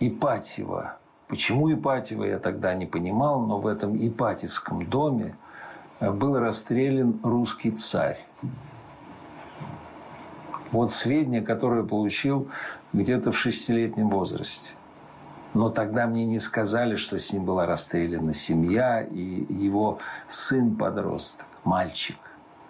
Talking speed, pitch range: 105 wpm, 100-120 Hz